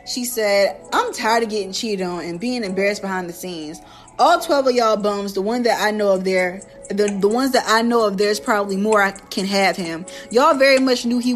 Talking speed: 240 wpm